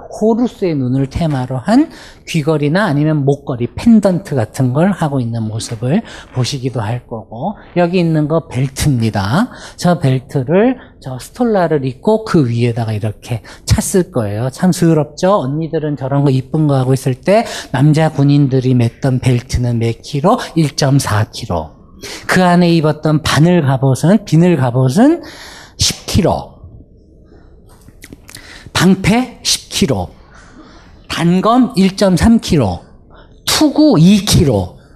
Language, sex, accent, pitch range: Korean, male, native, 130-190 Hz